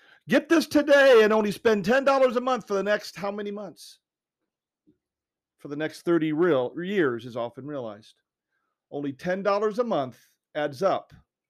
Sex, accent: male, American